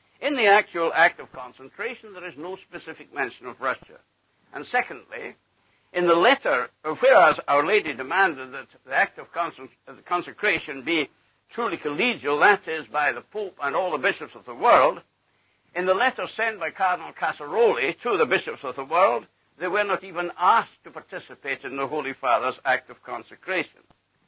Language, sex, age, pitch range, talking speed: English, male, 60-79, 145-205 Hz, 175 wpm